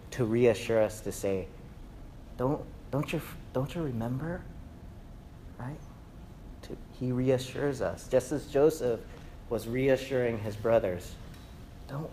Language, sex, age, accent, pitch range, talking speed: English, male, 40-59, American, 100-125 Hz, 120 wpm